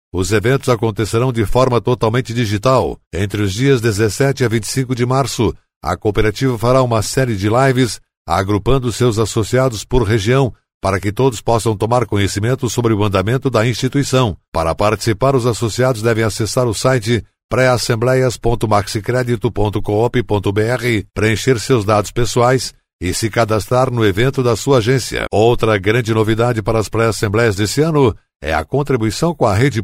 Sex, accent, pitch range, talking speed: male, Brazilian, 110-130 Hz, 150 wpm